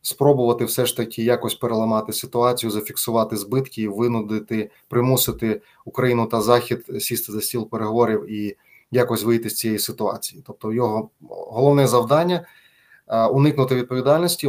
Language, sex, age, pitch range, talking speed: Ukrainian, male, 20-39, 115-135 Hz, 130 wpm